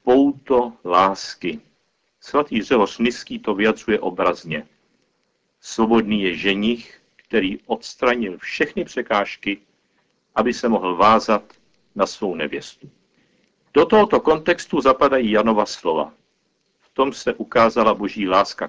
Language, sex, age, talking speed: Czech, male, 60-79, 110 wpm